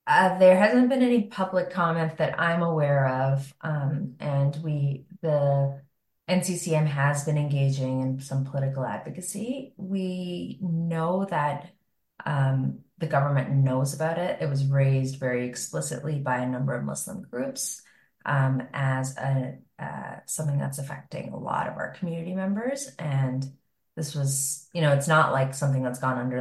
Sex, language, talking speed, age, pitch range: female, English, 155 wpm, 30-49, 135-180 Hz